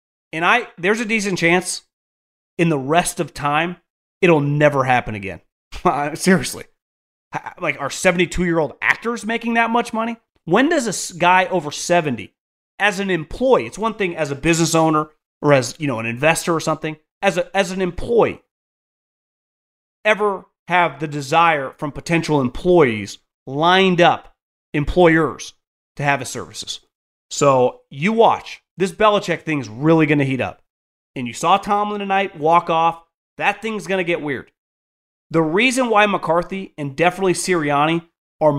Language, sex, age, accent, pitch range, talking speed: English, male, 30-49, American, 130-180 Hz, 160 wpm